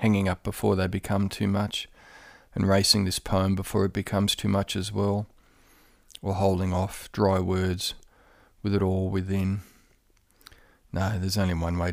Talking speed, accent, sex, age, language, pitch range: 160 wpm, Australian, male, 40-59, English, 95-105 Hz